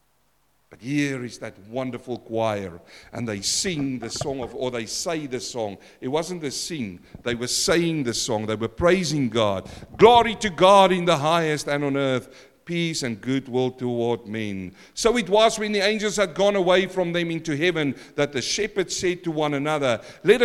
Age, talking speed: 50-69, 190 wpm